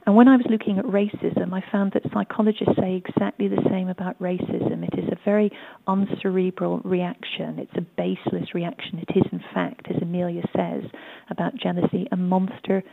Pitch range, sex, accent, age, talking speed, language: 185-215 Hz, female, British, 40-59, 175 wpm, English